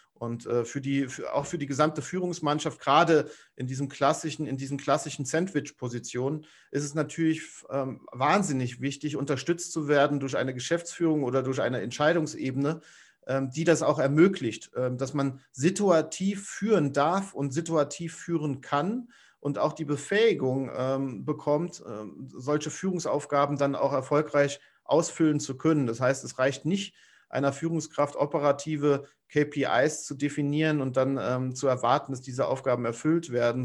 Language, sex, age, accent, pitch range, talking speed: German, male, 40-59, German, 135-160 Hz, 135 wpm